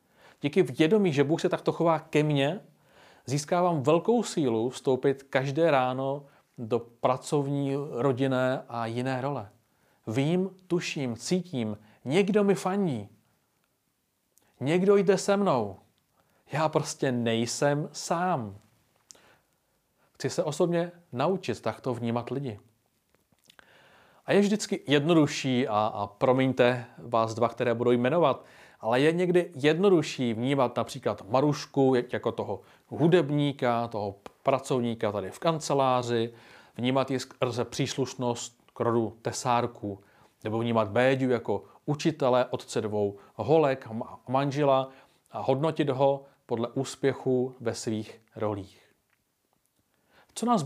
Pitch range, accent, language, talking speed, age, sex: 120-160 Hz, native, Czech, 115 wpm, 40-59, male